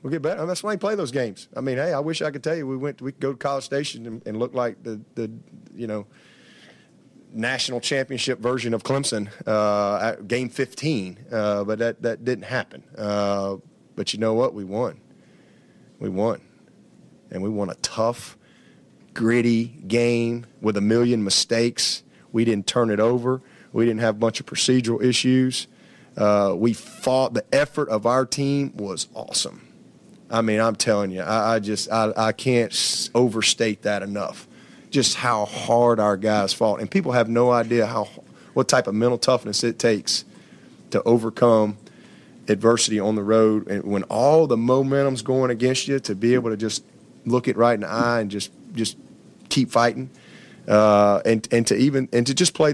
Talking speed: 190 wpm